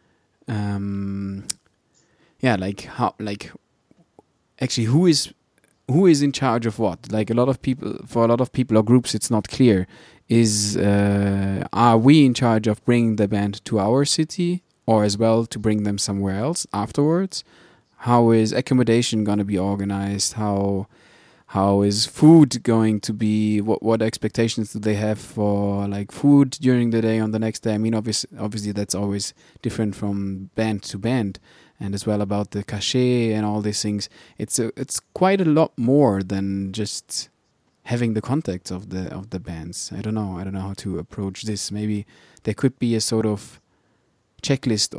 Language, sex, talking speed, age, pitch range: English, male, 185 wpm, 20-39, 100-120 Hz